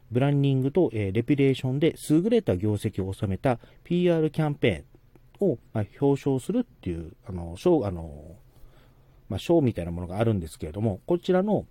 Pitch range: 95-145 Hz